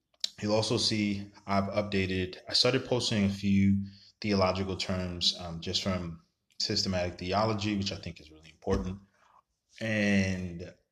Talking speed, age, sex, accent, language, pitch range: 130 wpm, 20-39, male, American, English, 90-105 Hz